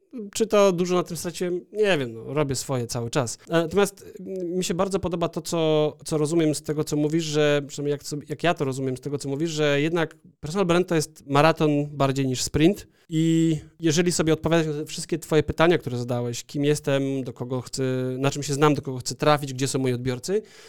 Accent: native